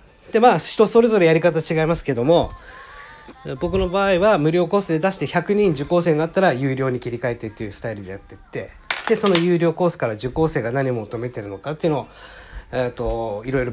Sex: male